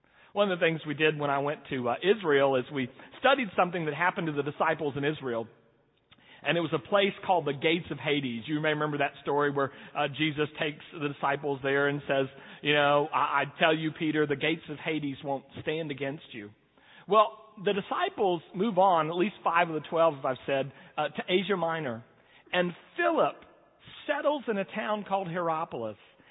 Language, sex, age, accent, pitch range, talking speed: English, male, 40-59, American, 140-195 Hz, 200 wpm